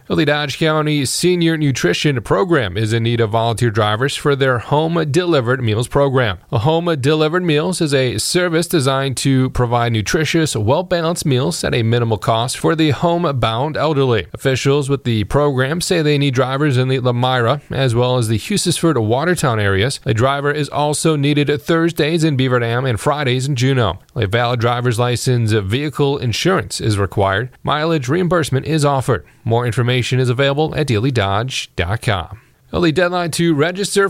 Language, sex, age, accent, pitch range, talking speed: English, male, 30-49, American, 120-155 Hz, 165 wpm